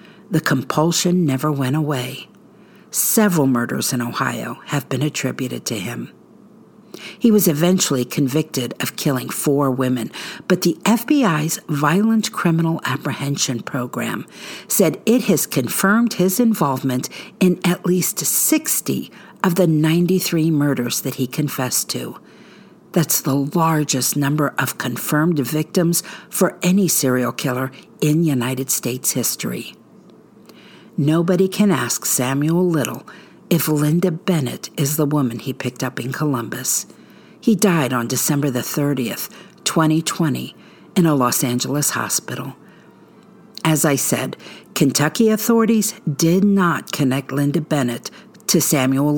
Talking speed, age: 125 wpm, 50-69